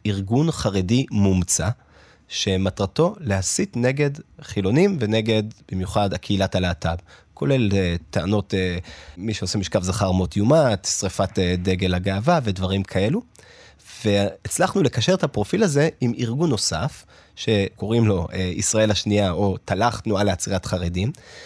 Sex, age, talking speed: male, 30-49, 125 wpm